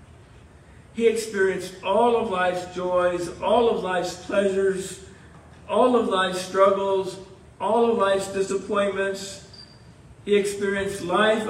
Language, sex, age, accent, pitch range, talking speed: English, male, 50-69, American, 165-220 Hz, 110 wpm